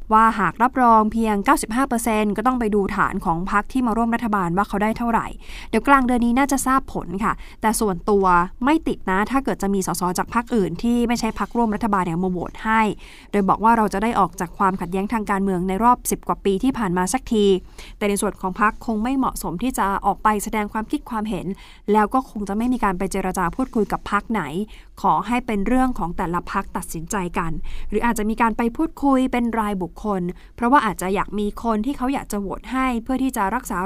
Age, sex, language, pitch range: 20-39, female, Thai, 195-240 Hz